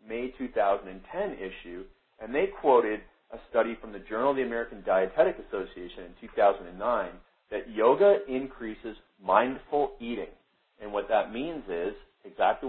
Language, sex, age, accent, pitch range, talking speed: English, male, 40-59, American, 100-135 Hz, 135 wpm